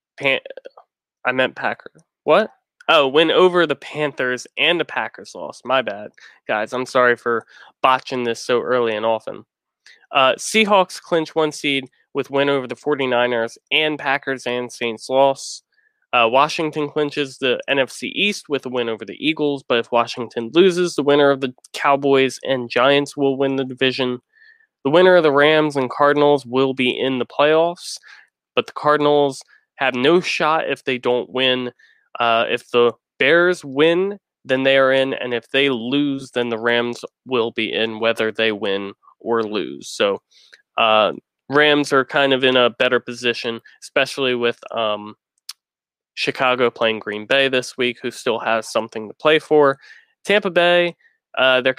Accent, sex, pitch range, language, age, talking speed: American, male, 120-145 Hz, English, 20-39, 165 wpm